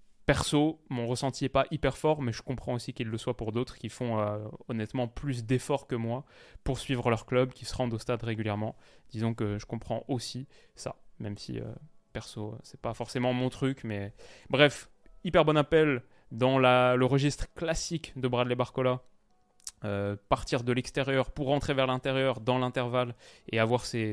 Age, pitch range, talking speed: 20-39, 115-140 Hz, 185 wpm